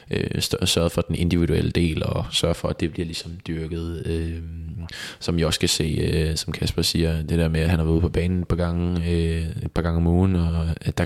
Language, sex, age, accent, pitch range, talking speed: Danish, male, 20-39, native, 80-90 Hz, 220 wpm